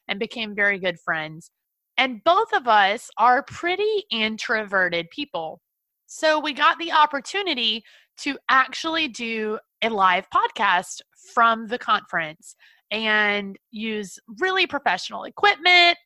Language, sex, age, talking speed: English, female, 20-39, 120 wpm